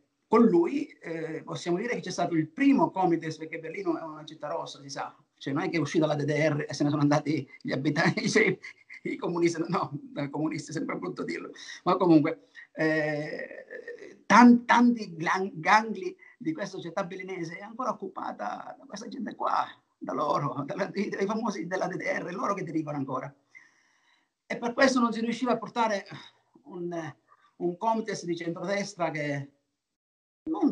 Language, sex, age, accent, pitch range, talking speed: Italian, male, 50-69, native, 160-210 Hz, 170 wpm